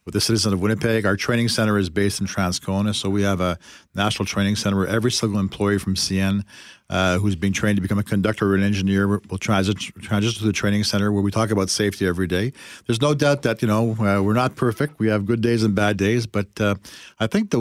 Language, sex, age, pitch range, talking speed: English, male, 50-69, 100-120 Hz, 240 wpm